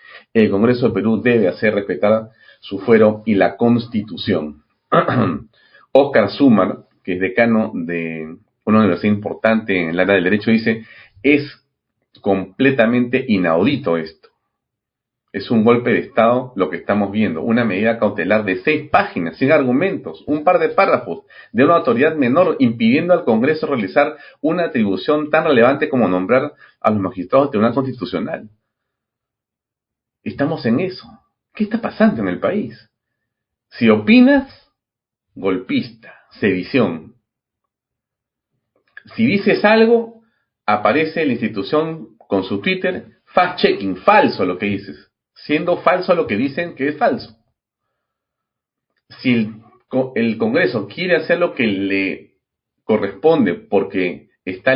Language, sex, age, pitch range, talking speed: Spanish, male, 40-59, 105-170 Hz, 130 wpm